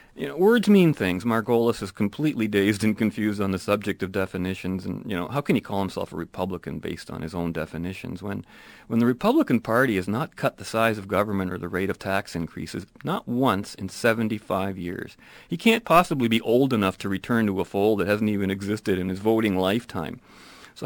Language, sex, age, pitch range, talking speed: English, male, 40-59, 95-120 Hz, 215 wpm